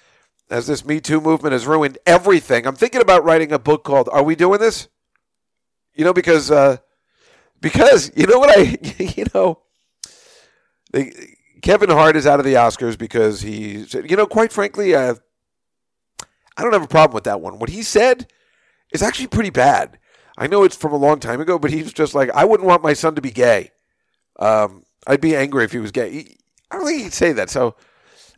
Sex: male